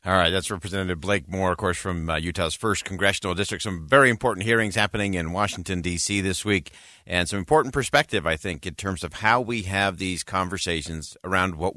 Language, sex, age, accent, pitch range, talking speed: English, male, 50-69, American, 90-120 Hz, 205 wpm